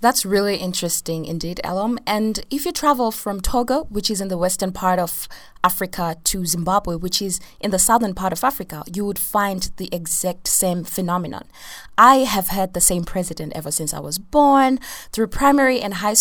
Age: 20-39